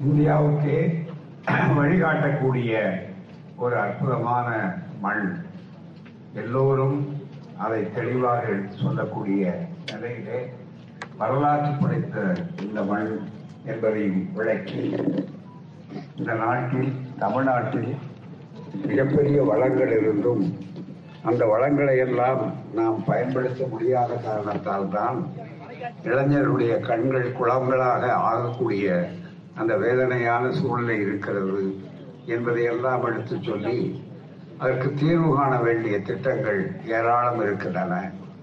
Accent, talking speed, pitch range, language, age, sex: native, 75 wpm, 120-160 Hz, Tamil, 60-79, male